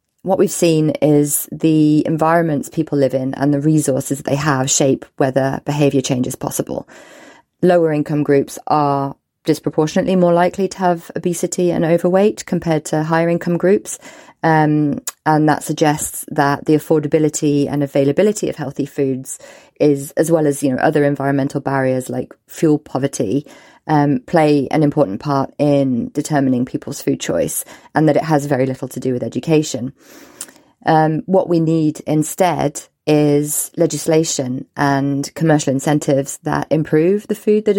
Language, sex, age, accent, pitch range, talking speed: English, female, 30-49, British, 140-170 Hz, 150 wpm